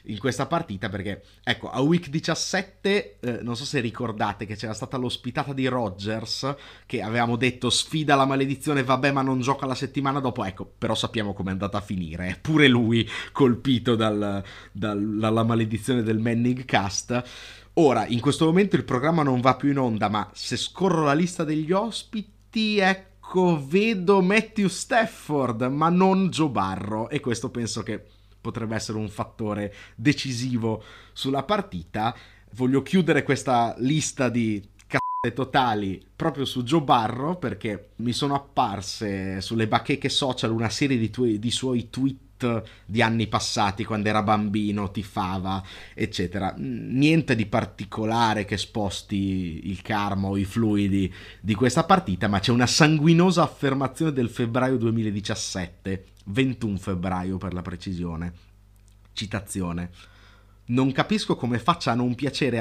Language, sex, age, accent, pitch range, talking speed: Italian, male, 30-49, native, 105-140 Hz, 145 wpm